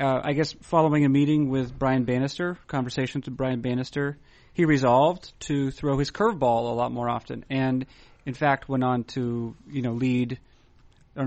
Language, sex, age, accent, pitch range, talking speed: English, male, 30-49, American, 120-150 Hz, 180 wpm